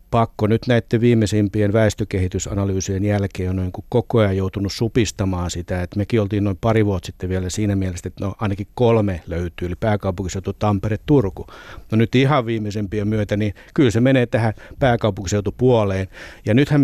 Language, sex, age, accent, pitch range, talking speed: Finnish, male, 60-79, native, 95-110 Hz, 155 wpm